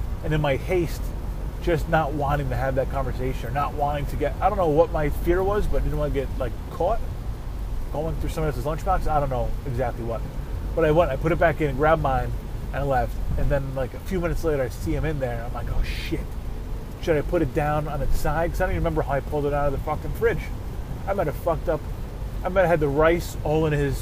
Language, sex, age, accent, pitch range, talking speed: English, male, 30-49, American, 120-155 Hz, 260 wpm